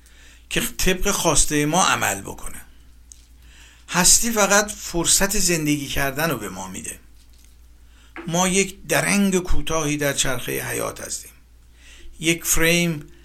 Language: Persian